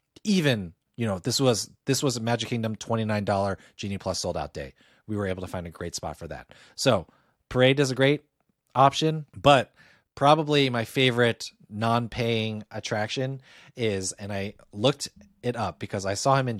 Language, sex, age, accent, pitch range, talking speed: English, male, 30-49, American, 100-130 Hz, 175 wpm